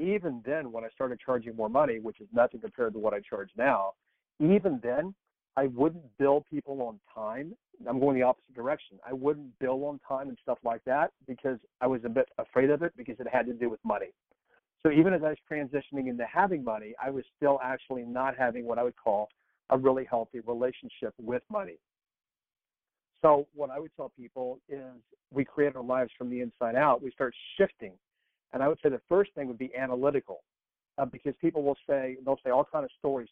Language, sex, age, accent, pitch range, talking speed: English, male, 50-69, American, 120-145 Hz, 215 wpm